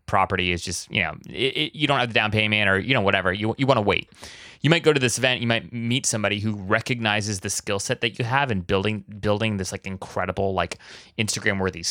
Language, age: English, 20-39